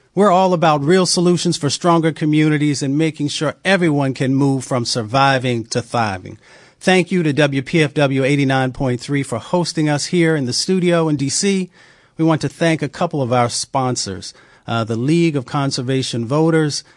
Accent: American